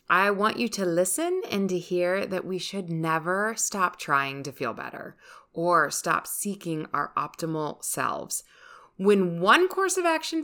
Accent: American